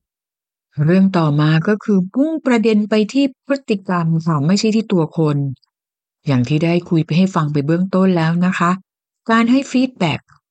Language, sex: Thai, female